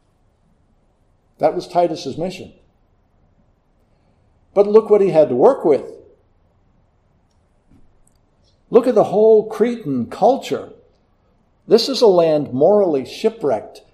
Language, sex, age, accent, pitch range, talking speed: English, male, 60-79, American, 115-185 Hz, 105 wpm